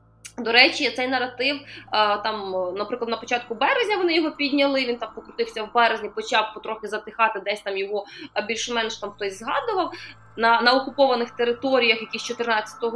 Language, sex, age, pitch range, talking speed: Ukrainian, female, 20-39, 220-280 Hz, 160 wpm